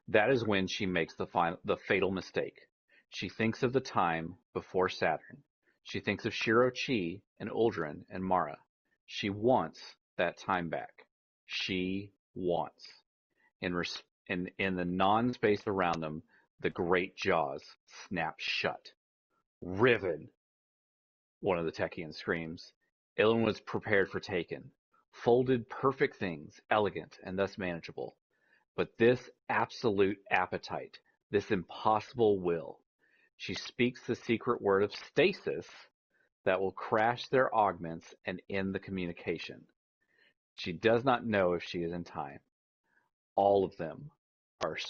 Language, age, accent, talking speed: English, 40-59, American, 135 wpm